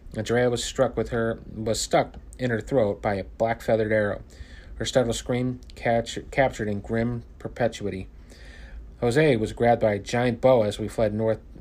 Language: English